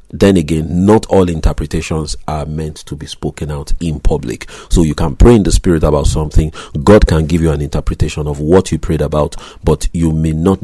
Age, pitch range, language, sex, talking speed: 40-59, 75-90 Hz, English, male, 210 wpm